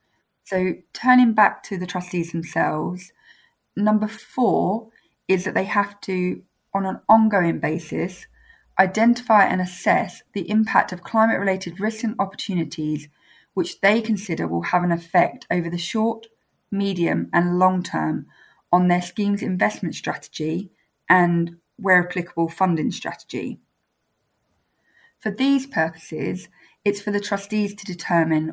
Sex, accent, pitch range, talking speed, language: female, British, 170-210 Hz, 130 wpm, English